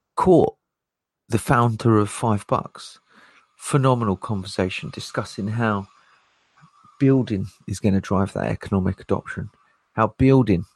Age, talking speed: 40-59, 110 wpm